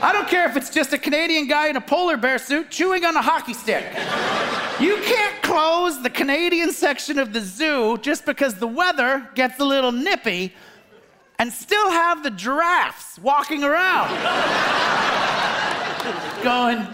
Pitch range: 240-330 Hz